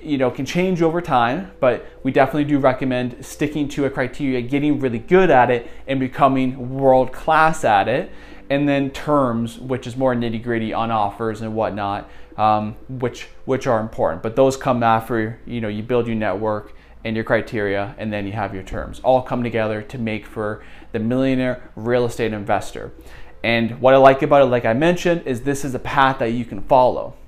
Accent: American